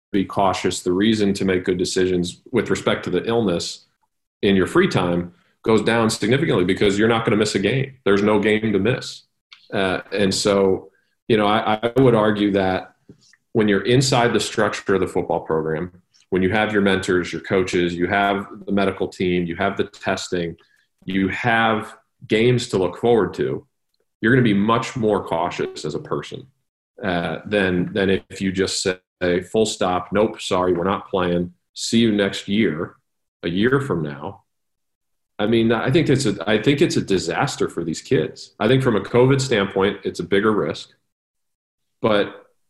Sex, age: male, 40-59